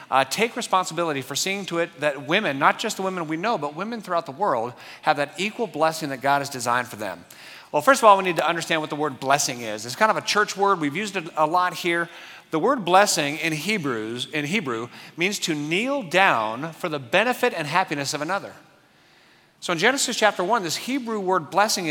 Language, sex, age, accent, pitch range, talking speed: English, male, 40-59, American, 150-195 Hz, 220 wpm